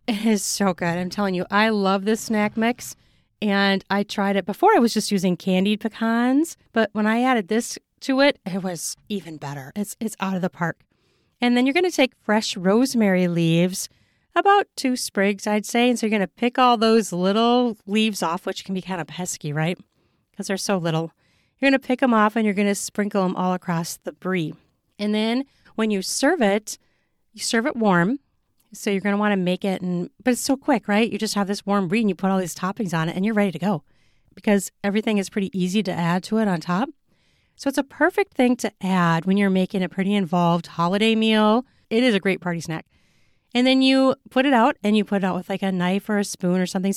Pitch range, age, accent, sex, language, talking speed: 185-225 Hz, 40-59, American, female, English, 240 wpm